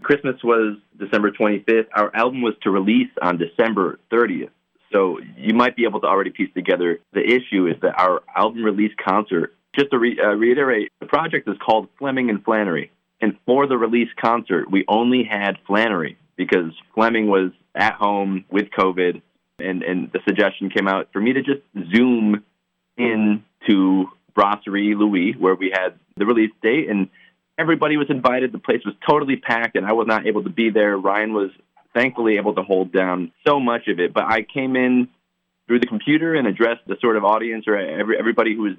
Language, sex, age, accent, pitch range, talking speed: English, male, 30-49, American, 95-120 Hz, 190 wpm